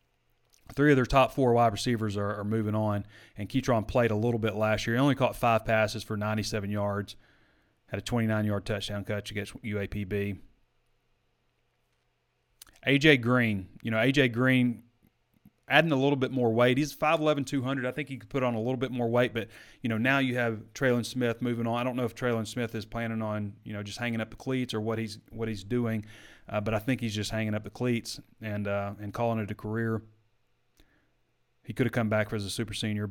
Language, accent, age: English, American, 30-49